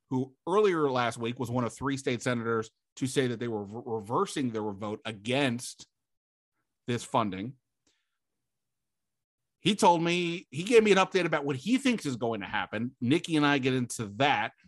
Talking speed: 180 wpm